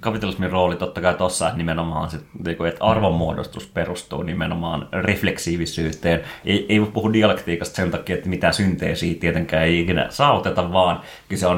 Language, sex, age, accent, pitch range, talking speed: Finnish, male, 30-49, native, 85-100 Hz, 145 wpm